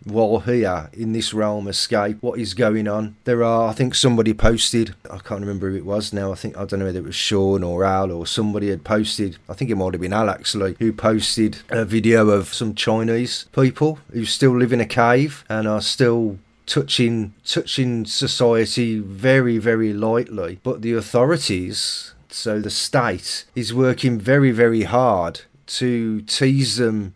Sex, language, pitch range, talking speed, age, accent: male, English, 105-125 Hz, 185 wpm, 30-49, British